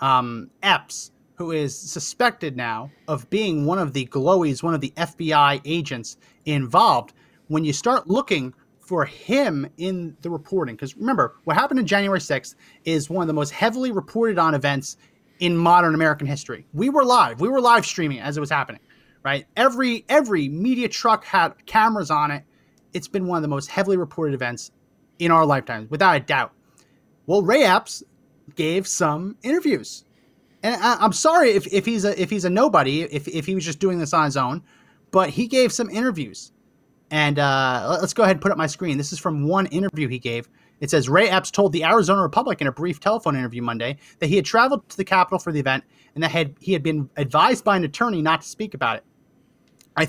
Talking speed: 205 wpm